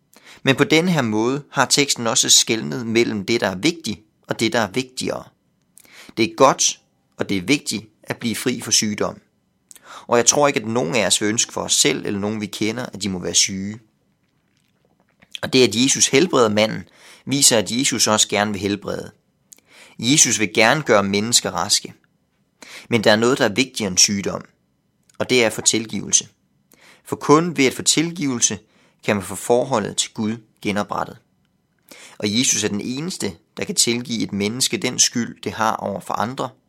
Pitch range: 105-135 Hz